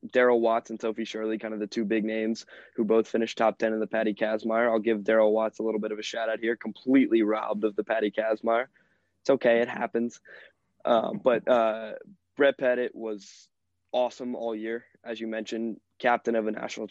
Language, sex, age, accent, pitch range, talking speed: English, male, 20-39, American, 110-120 Hz, 205 wpm